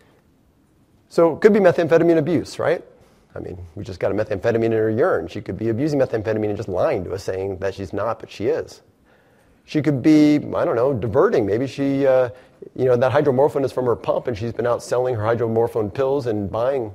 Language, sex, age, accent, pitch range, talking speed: English, male, 30-49, American, 110-155 Hz, 220 wpm